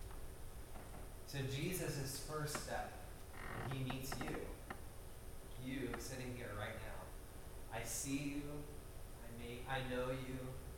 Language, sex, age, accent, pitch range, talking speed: English, male, 30-49, American, 95-135 Hz, 105 wpm